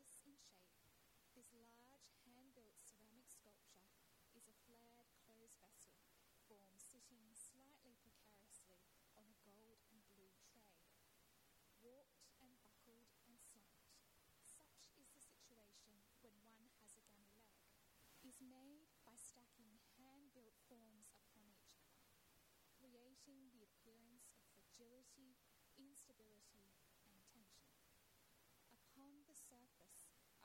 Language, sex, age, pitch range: English, female, 10-29, 220-260 Hz